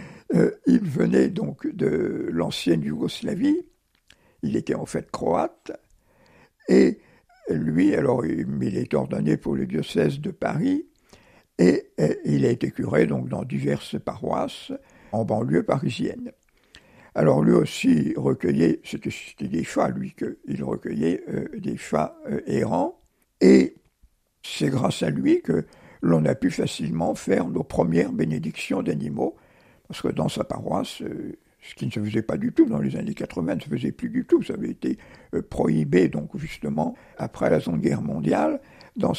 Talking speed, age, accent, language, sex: 155 wpm, 60-79, French, French, male